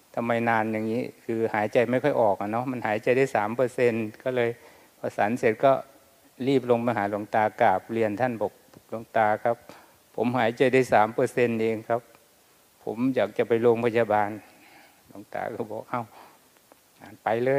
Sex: male